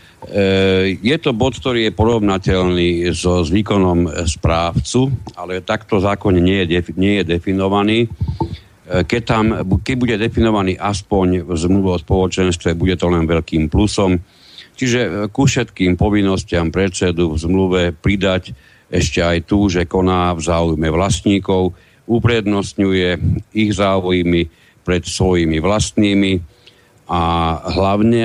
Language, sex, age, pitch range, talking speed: Slovak, male, 50-69, 85-100 Hz, 115 wpm